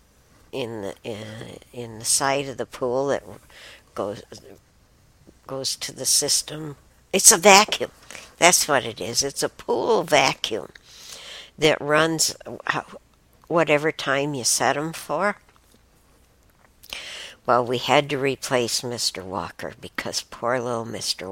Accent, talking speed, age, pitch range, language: American, 120 wpm, 60-79, 120-170 Hz, English